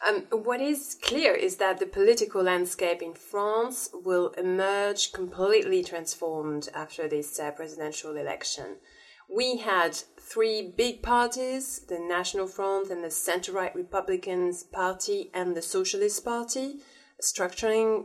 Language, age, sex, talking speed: English, 30-49, female, 125 wpm